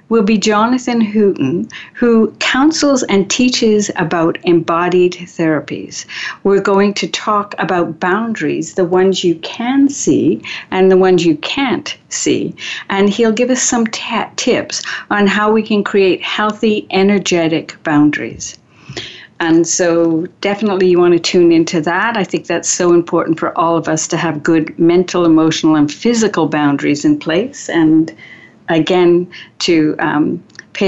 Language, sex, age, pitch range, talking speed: English, female, 60-79, 170-220 Hz, 145 wpm